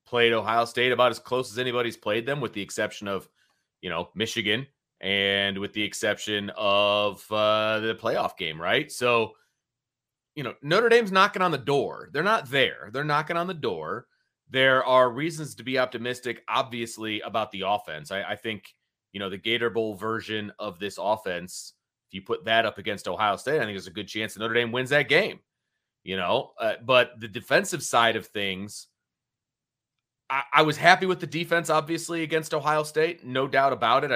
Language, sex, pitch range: English, male, 110-140 Hz